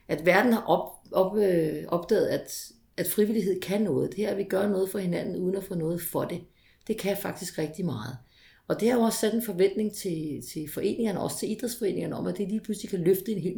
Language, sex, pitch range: Danish, female, 165-205 Hz